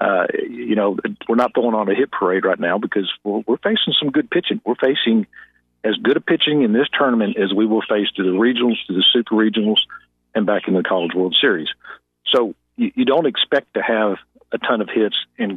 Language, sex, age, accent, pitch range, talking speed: English, male, 50-69, American, 100-120 Hz, 225 wpm